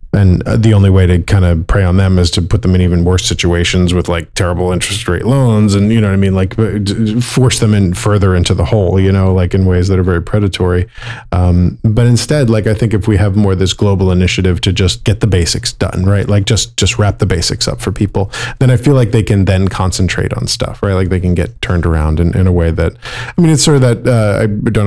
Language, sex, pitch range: English, male, 95-115 Hz